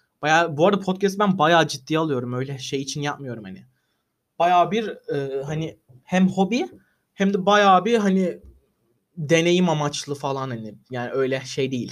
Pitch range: 130-185 Hz